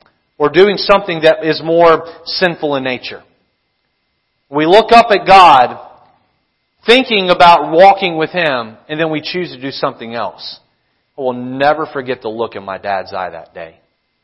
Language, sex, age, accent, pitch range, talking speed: English, male, 40-59, American, 140-200 Hz, 165 wpm